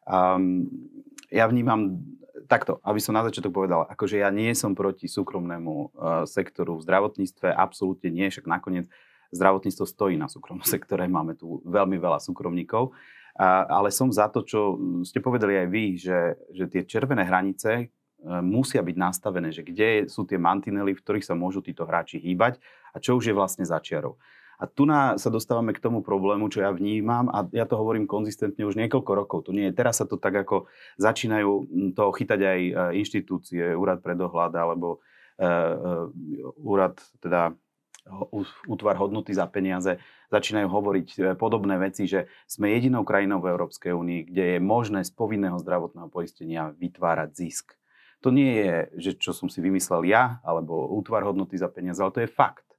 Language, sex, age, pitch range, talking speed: Slovak, male, 30-49, 90-110 Hz, 170 wpm